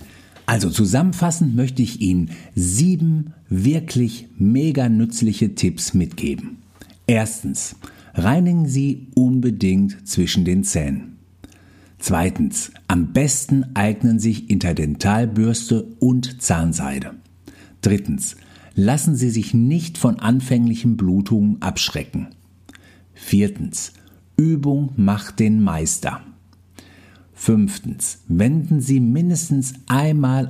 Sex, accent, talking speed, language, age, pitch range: male, German, 90 wpm, German, 50-69, 95-120 Hz